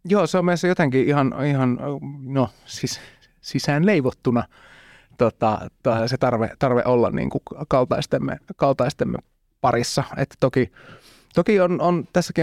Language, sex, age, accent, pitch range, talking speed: Finnish, male, 30-49, native, 120-140 Hz, 125 wpm